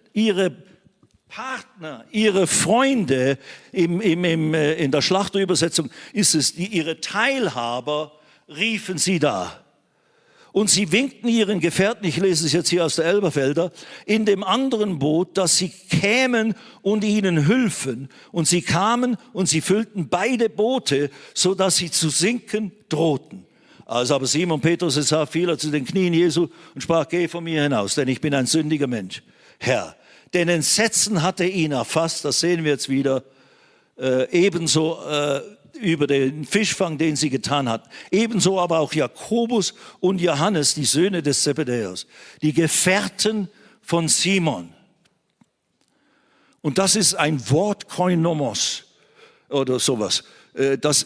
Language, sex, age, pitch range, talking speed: German, male, 50-69, 155-195 Hz, 145 wpm